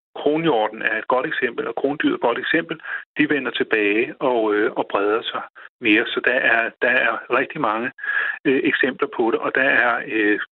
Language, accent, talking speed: Danish, native, 195 wpm